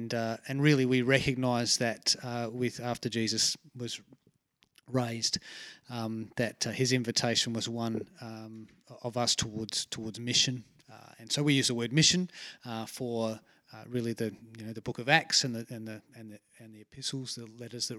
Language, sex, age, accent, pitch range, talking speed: English, male, 30-49, Australian, 110-130 Hz, 185 wpm